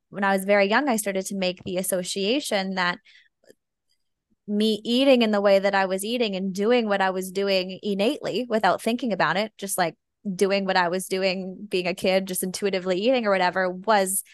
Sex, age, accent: female, 20-39, American